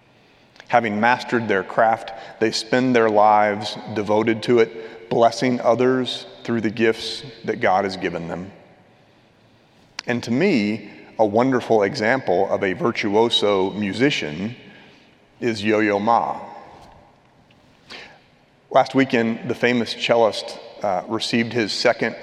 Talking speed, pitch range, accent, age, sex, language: 115 wpm, 105-120 Hz, American, 40-59, male, English